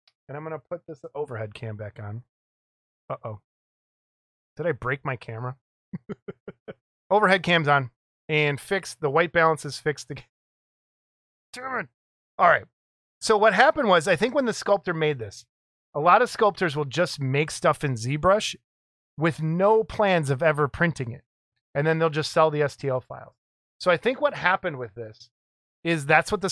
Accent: American